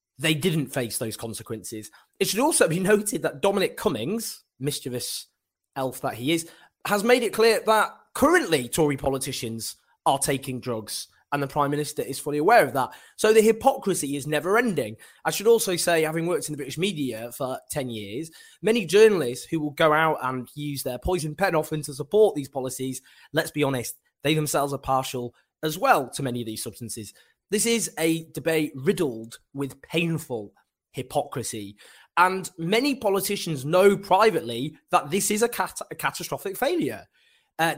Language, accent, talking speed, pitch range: English, British, 170 wpm, 130-180 Hz